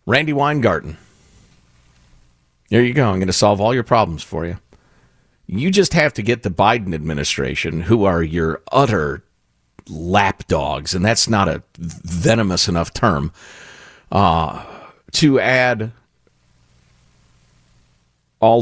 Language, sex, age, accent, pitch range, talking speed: English, male, 40-59, American, 85-120 Hz, 120 wpm